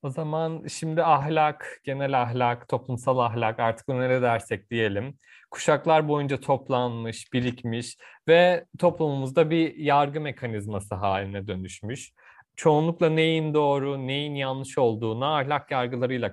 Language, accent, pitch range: Turkish, native, 125-165 Hz